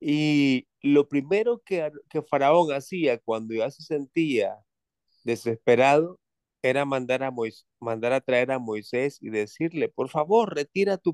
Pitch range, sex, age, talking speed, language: 130-170 Hz, male, 30-49, 145 wpm, English